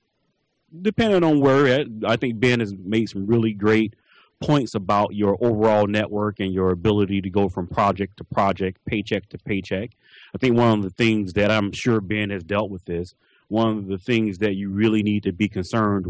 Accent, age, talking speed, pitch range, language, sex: American, 30-49, 200 wpm, 100-125 Hz, English, male